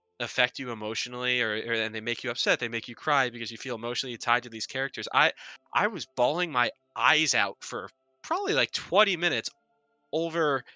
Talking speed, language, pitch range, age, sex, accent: 195 wpm, English, 105-130 Hz, 20-39, male, American